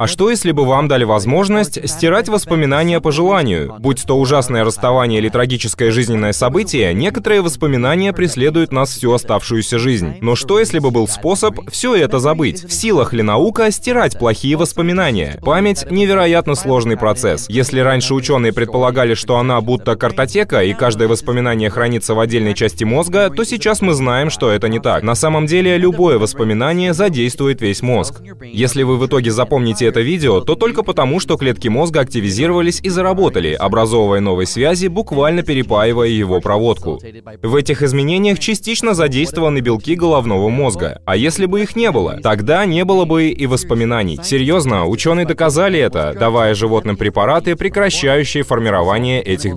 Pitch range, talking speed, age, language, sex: 115-170 Hz, 160 wpm, 20-39, Russian, male